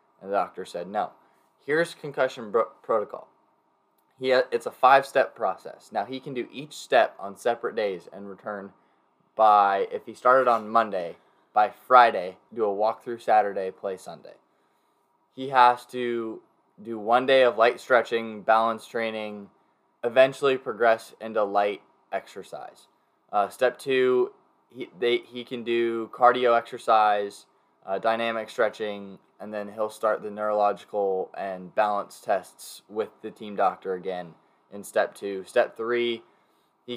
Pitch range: 105-120 Hz